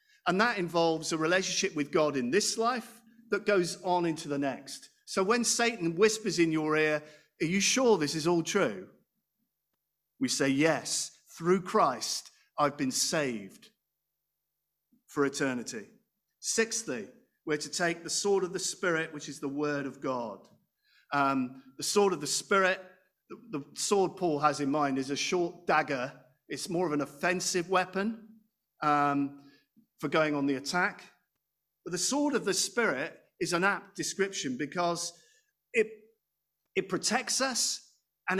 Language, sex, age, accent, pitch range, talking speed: English, male, 50-69, British, 155-215 Hz, 155 wpm